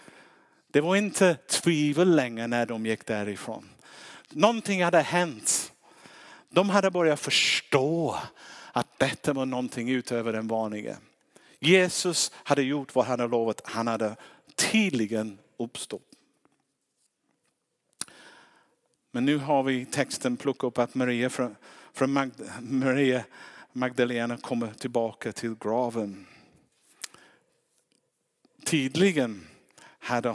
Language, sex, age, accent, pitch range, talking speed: Swedish, male, 50-69, Norwegian, 115-160 Hz, 105 wpm